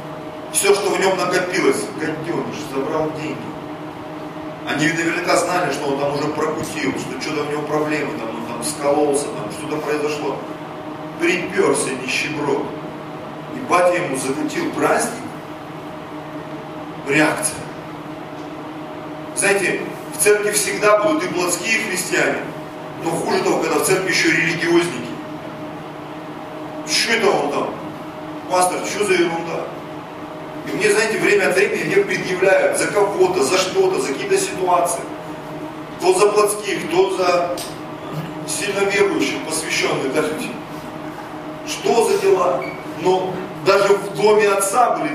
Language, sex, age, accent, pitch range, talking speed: Russian, male, 40-59, native, 155-210 Hz, 125 wpm